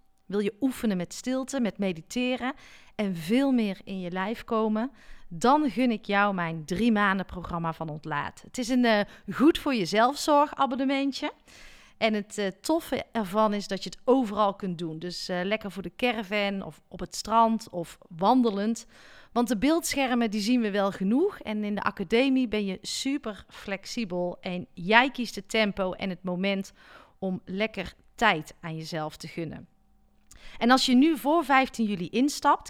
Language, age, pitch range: Dutch, 40-59, 185-245 Hz